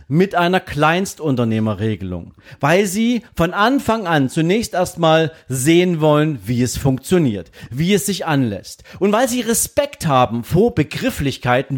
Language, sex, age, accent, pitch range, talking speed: German, male, 40-59, German, 135-180 Hz, 130 wpm